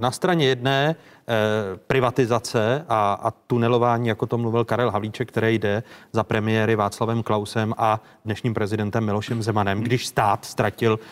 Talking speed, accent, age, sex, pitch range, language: 145 wpm, native, 30-49, male, 110-130 Hz, Czech